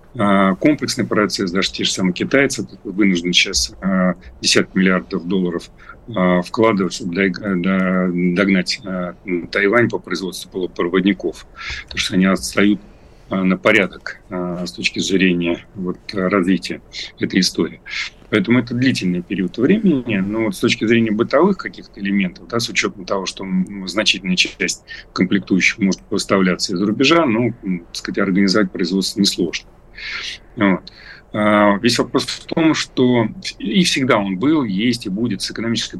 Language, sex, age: Russian, male, 40-59